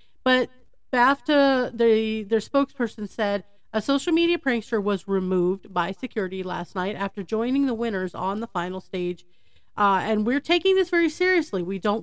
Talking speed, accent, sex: 165 wpm, American, female